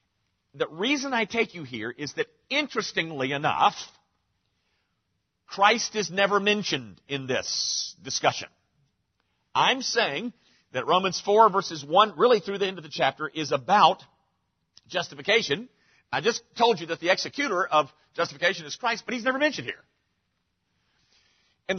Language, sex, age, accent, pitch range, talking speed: English, male, 50-69, American, 135-220 Hz, 140 wpm